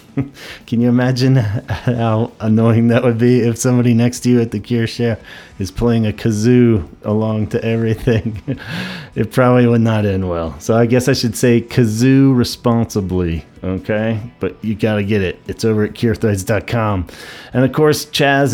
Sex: male